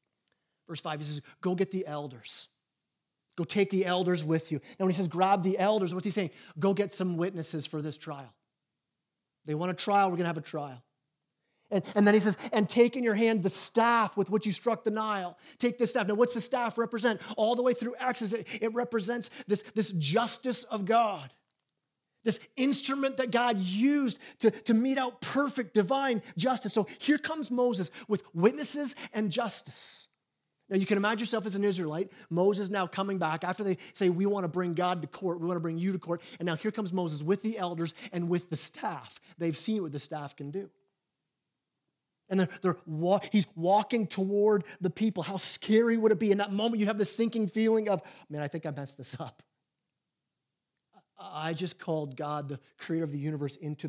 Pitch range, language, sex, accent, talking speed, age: 165-220 Hz, English, male, American, 205 wpm, 30-49